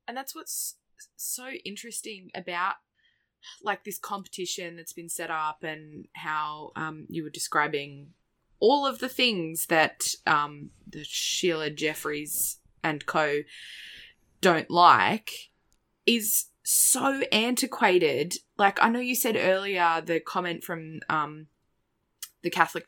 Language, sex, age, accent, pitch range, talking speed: English, female, 20-39, Australian, 155-235 Hz, 125 wpm